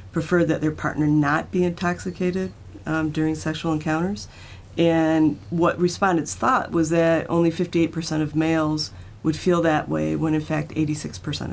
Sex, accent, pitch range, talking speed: female, American, 150-165 Hz, 150 wpm